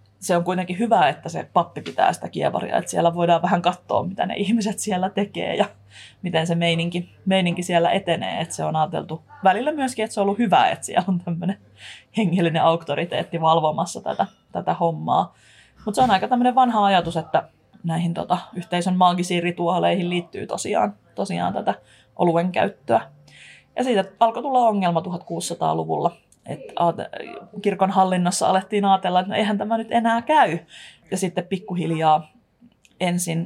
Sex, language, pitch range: female, Finnish, 165-200 Hz